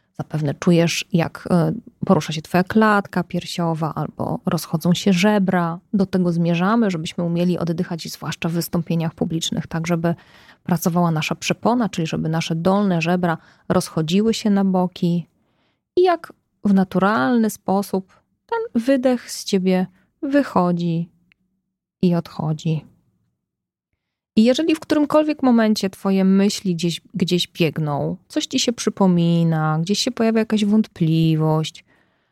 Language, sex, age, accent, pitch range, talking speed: Polish, female, 20-39, native, 170-220 Hz, 125 wpm